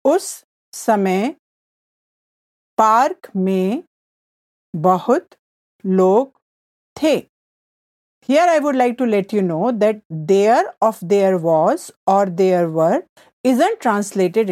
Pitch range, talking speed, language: 195-280 Hz, 105 wpm, English